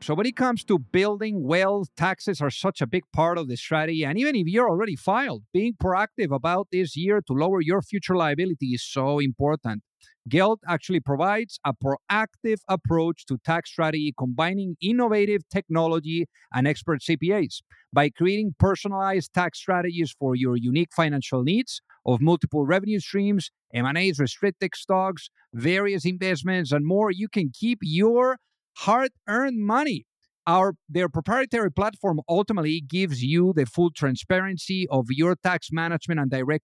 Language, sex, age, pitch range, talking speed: English, male, 50-69, 145-195 Hz, 155 wpm